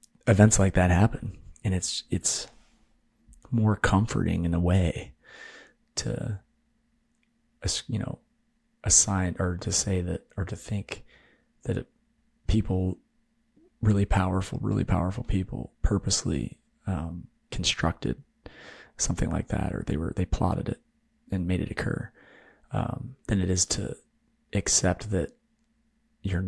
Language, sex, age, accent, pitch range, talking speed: English, male, 30-49, American, 90-120 Hz, 120 wpm